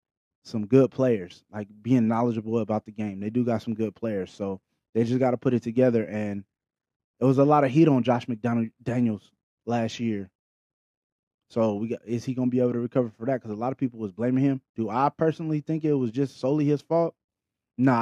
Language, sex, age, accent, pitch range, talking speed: English, male, 20-39, American, 105-130 Hz, 225 wpm